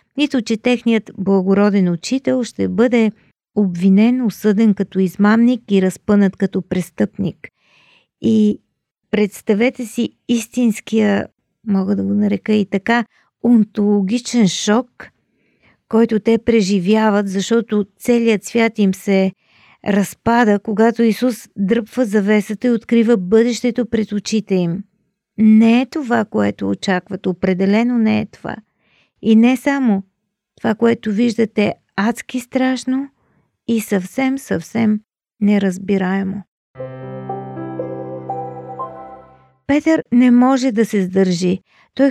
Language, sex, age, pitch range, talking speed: Bulgarian, female, 40-59, 200-240 Hz, 105 wpm